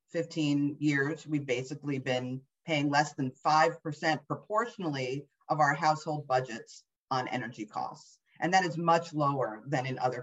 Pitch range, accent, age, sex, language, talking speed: 145-190 Hz, American, 40-59, female, English, 145 wpm